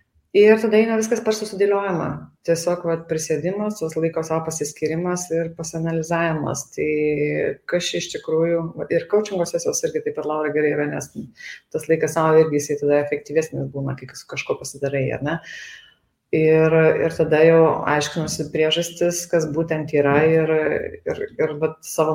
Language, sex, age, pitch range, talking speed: English, female, 30-49, 155-195 Hz, 140 wpm